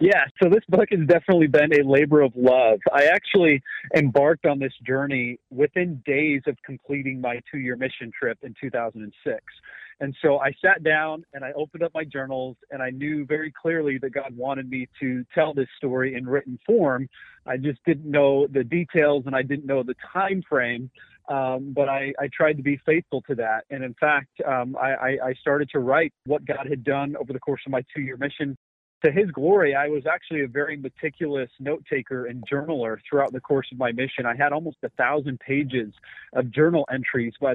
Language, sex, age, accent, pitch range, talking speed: English, male, 40-59, American, 130-150 Hz, 200 wpm